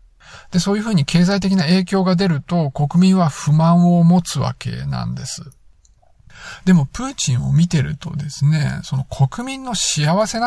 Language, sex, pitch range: Japanese, male, 140-190 Hz